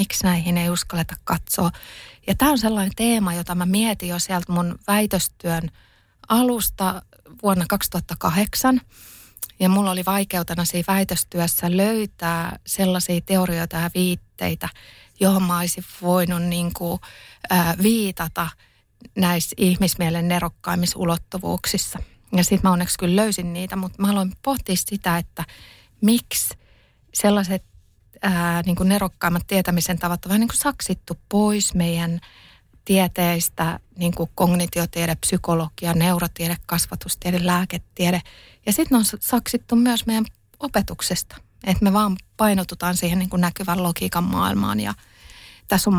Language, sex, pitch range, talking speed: Finnish, female, 170-195 Hz, 125 wpm